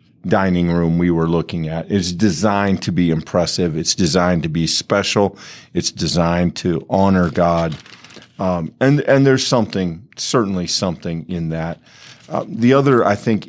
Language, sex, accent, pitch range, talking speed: English, male, American, 90-115 Hz, 155 wpm